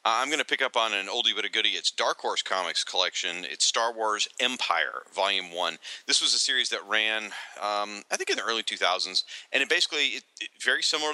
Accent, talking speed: American, 215 wpm